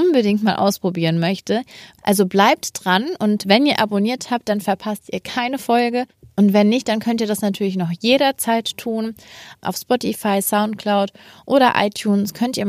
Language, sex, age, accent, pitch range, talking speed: German, female, 20-39, German, 195-235 Hz, 165 wpm